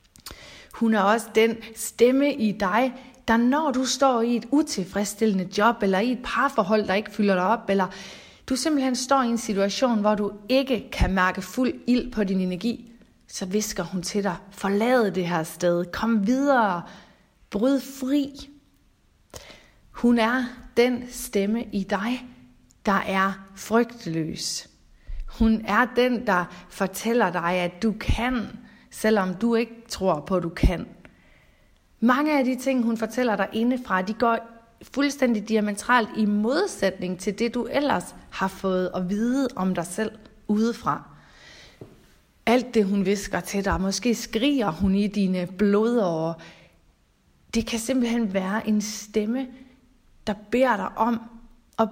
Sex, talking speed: female, 150 wpm